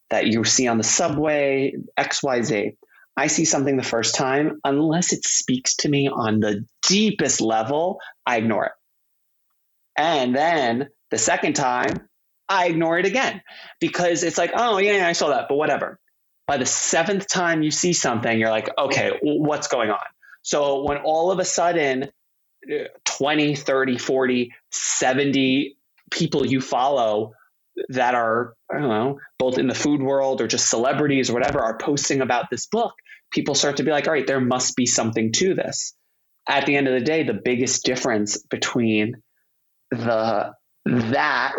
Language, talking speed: English, 165 wpm